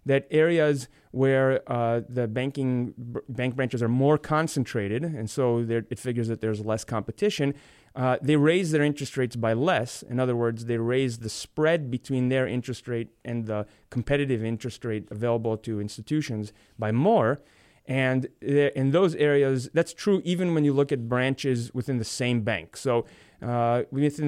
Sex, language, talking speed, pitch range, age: male, English, 170 wpm, 115-140 Hz, 30-49